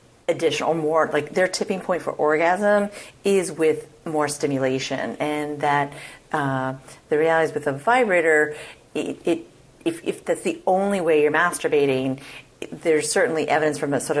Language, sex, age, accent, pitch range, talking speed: English, female, 40-59, American, 140-160 Hz, 155 wpm